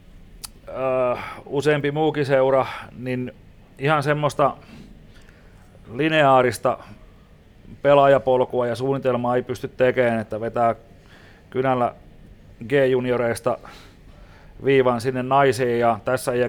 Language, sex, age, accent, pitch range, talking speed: Finnish, male, 30-49, native, 110-130 Hz, 80 wpm